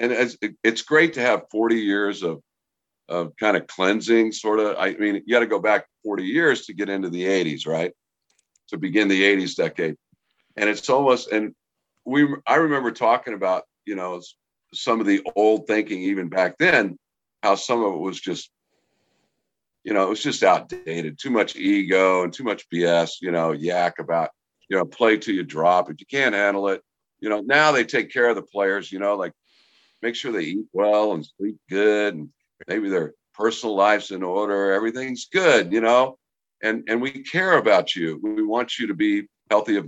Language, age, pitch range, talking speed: English, 50-69, 100-130 Hz, 195 wpm